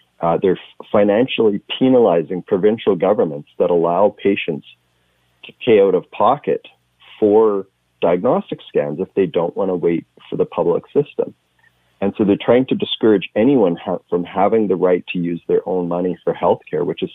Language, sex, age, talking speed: English, male, 40-59, 170 wpm